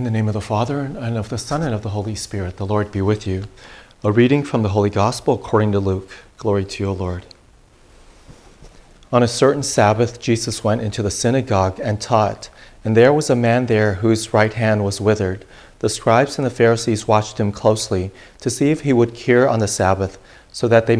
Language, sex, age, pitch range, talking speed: English, male, 40-59, 100-115 Hz, 215 wpm